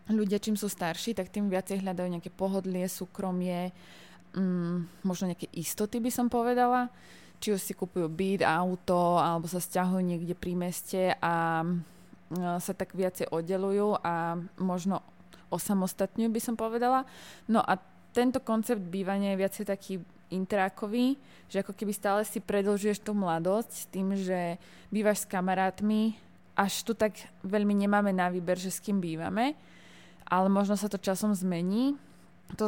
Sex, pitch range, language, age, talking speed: female, 180-205 Hz, Slovak, 20-39, 150 wpm